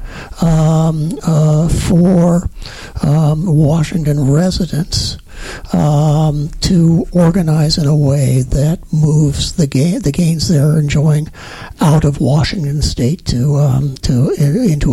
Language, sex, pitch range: English, male, 145-175 Hz